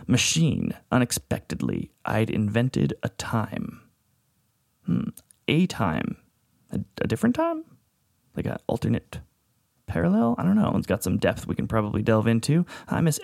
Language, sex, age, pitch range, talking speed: English, male, 30-49, 115-165 Hz, 140 wpm